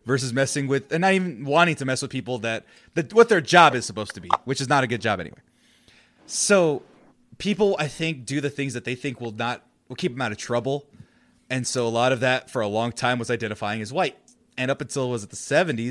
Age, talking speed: 20-39, 255 wpm